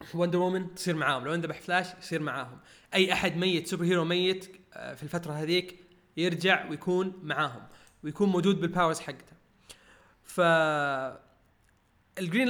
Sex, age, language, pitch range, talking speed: male, 20-39, Arabic, 160-195 Hz, 130 wpm